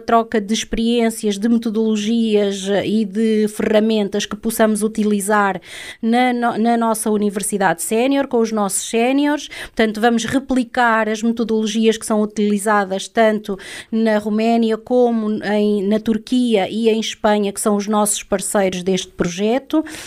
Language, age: Hungarian, 20-39